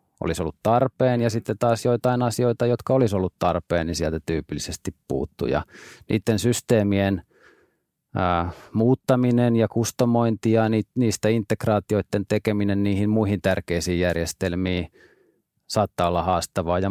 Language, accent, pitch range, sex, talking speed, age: Finnish, native, 95-115 Hz, male, 125 wpm, 30-49